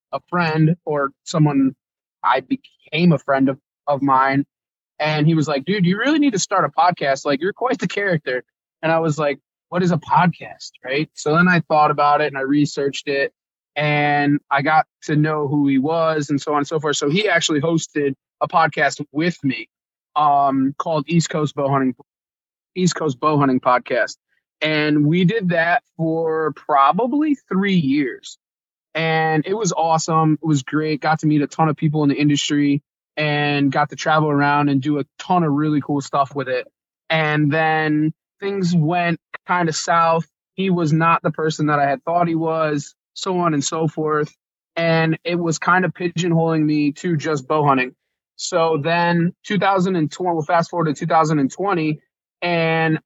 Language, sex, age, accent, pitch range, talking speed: English, male, 20-39, American, 145-170 Hz, 185 wpm